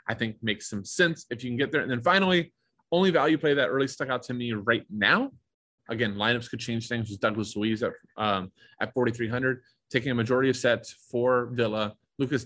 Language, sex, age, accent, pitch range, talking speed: English, male, 20-39, American, 105-140 Hz, 210 wpm